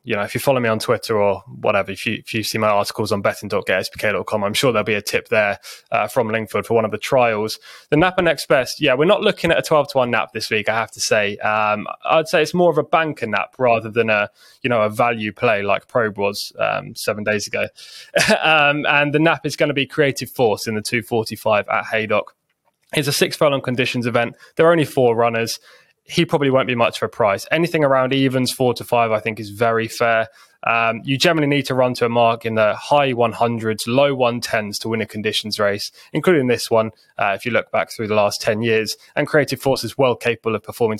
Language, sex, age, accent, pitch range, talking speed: English, male, 20-39, British, 110-130 Hz, 240 wpm